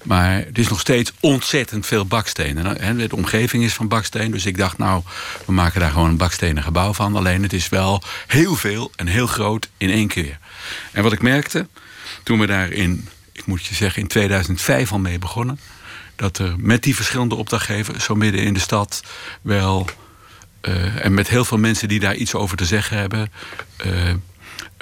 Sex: male